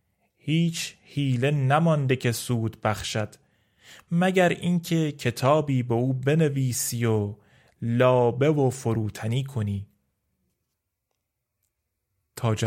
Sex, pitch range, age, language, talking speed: male, 110-150 Hz, 30-49, Persian, 85 wpm